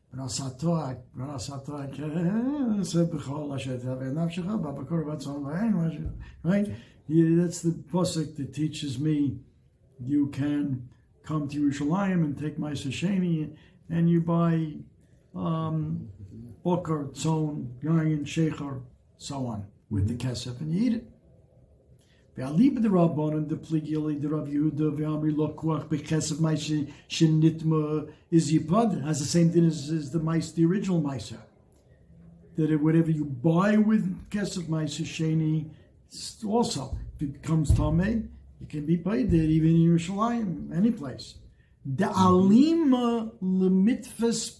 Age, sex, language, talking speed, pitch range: 60-79, male, English, 95 wpm, 145-180 Hz